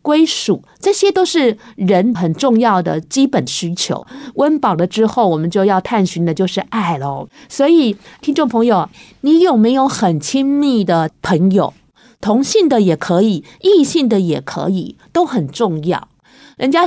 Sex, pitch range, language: female, 185-265 Hz, Chinese